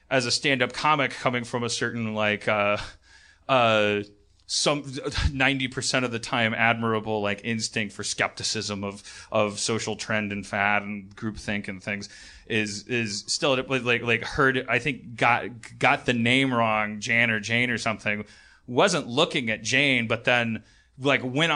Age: 30-49